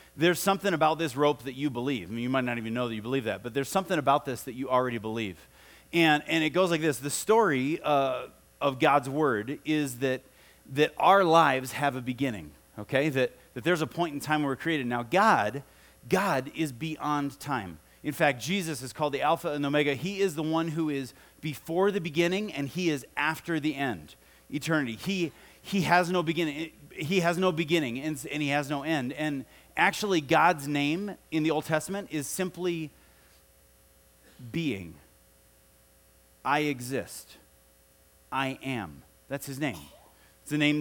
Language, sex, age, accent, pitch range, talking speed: English, male, 30-49, American, 125-160 Hz, 185 wpm